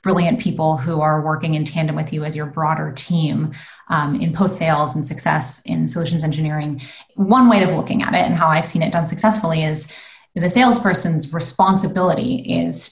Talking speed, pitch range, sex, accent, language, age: 180 wpm, 155-190 Hz, female, American, English, 30-49